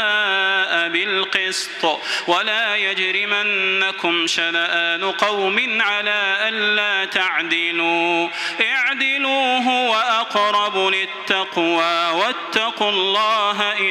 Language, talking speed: Arabic, 55 wpm